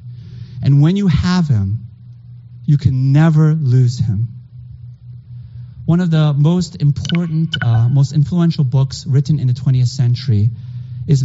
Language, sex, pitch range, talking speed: English, male, 120-160 Hz, 135 wpm